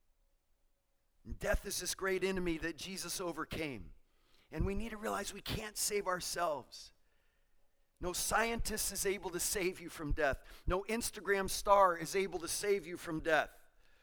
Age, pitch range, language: 40-59, 150-200 Hz, English